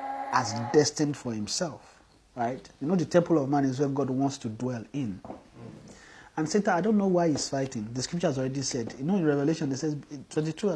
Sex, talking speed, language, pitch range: male, 210 wpm, English, 135-180 Hz